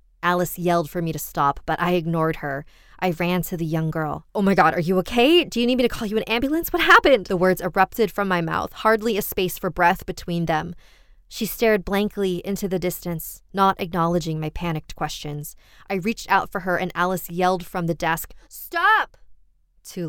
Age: 20-39